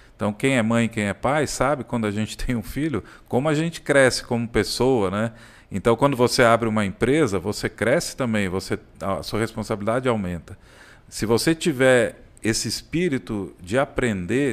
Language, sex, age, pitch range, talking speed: Portuguese, male, 50-69, 105-145 Hz, 175 wpm